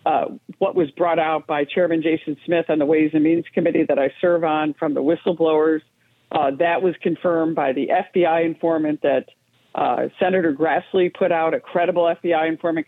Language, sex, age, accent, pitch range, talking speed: English, female, 50-69, American, 165-205 Hz, 180 wpm